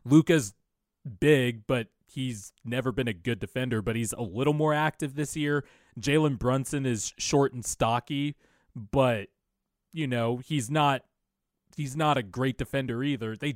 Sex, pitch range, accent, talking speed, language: male, 110-140 Hz, American, 150 wpm, English